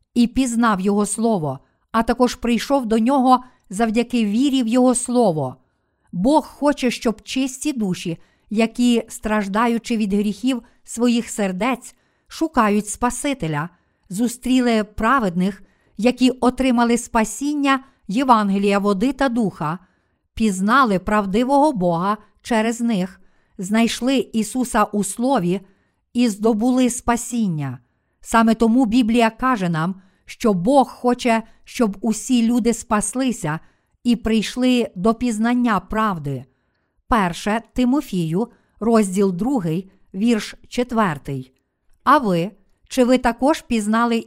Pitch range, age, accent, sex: 200-245 Hz, 50-69, native, female